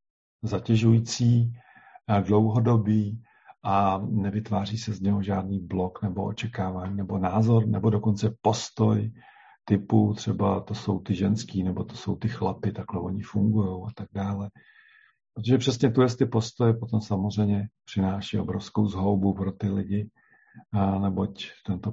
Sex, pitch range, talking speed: male, 100-110 Hz, 135 wpm